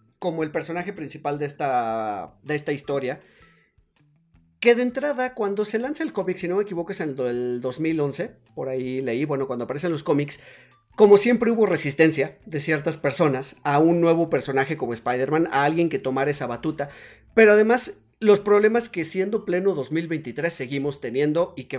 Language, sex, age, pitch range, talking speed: Spanish, male, 30-49, 140-195 Hz, 180 wpm